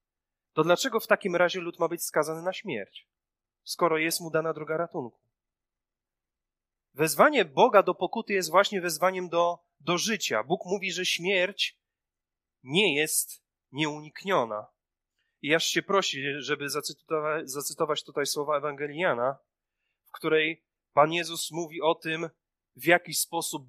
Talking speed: 135 wpm